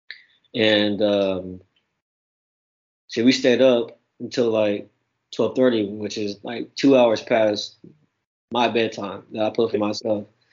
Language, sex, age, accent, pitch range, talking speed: English, male, 20-39, American, 110-130 Hz, 125 wpm